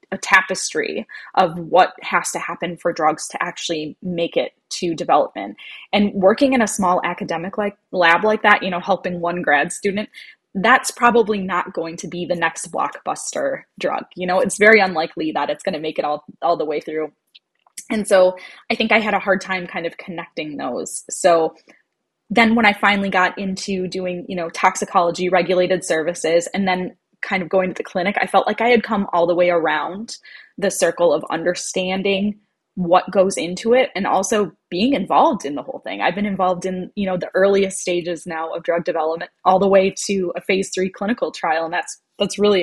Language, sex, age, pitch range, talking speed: English, female, 10-29, 175-205 Hz, 200 wpm